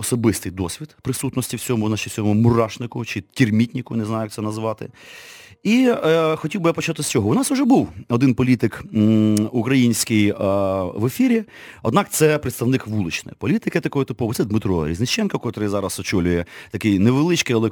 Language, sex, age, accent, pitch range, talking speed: Ukrainian, male, 30-49, native, 100-150 Hz, 160 wpm